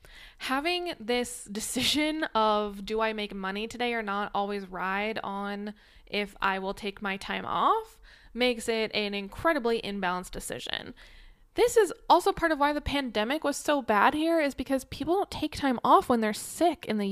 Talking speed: 180 wpm